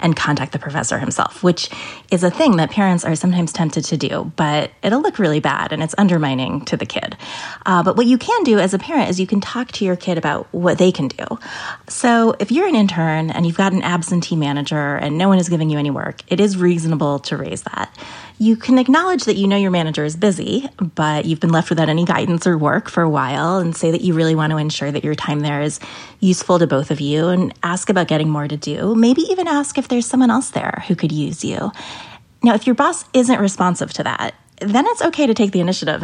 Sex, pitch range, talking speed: female, 155-205 Hz, 245 wpm